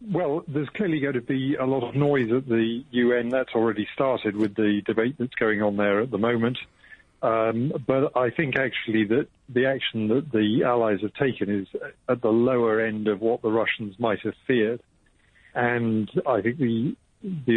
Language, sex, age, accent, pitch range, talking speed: English, male, 50-69, British, 105-130 Hz, 190 wpm